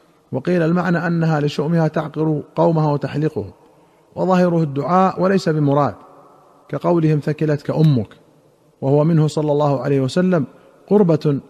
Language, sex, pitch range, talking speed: Arabic, male, 140-160 Hz, 110 wpm